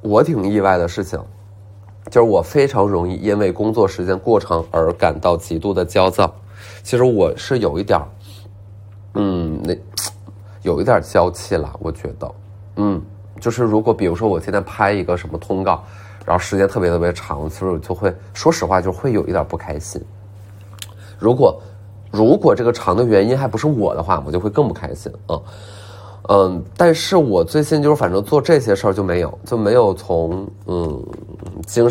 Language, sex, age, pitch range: Chinese, male, 20-39, 95-105 Hz